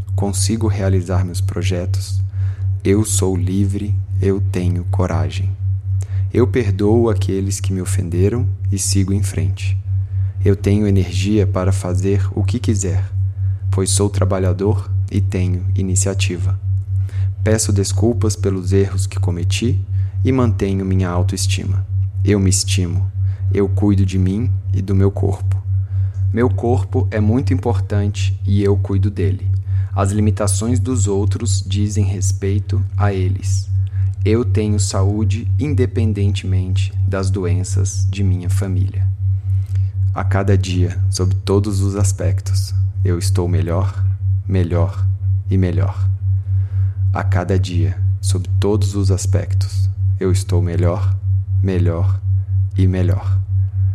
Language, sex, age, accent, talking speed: Portuguese, male, 20-39, Brazilian, 120 wpm